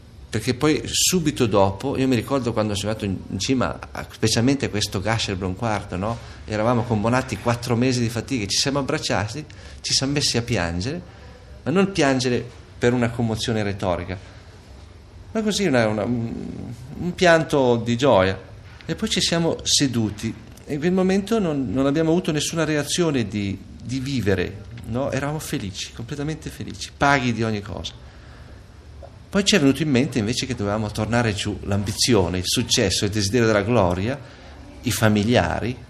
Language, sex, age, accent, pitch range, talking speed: Italian, male, 50-69, native, 100-135 Hz, 155 wpm